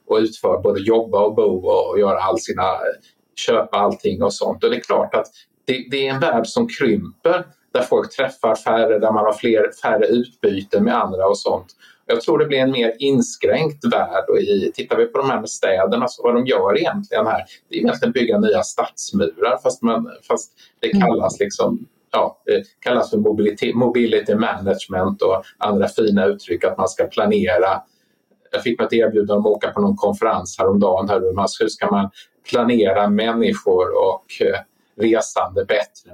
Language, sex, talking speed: Swedish, male, 180 wpm